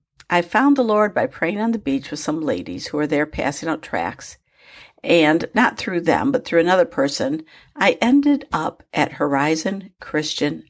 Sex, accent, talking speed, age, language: female, American, 180 wpm, 60-79, English